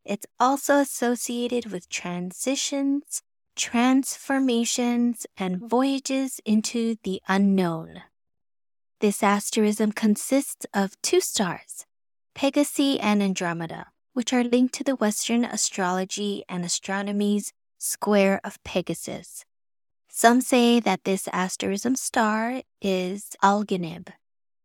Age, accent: 20-39, American